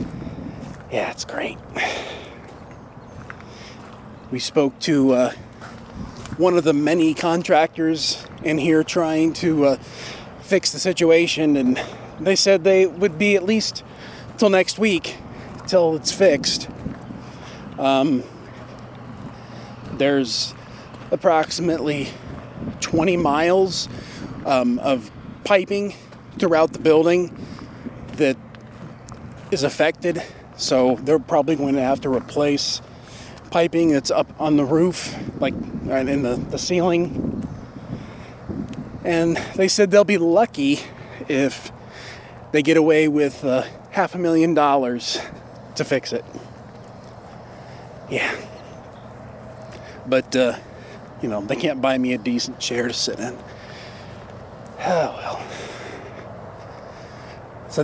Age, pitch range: 30-49, 125-165 Hz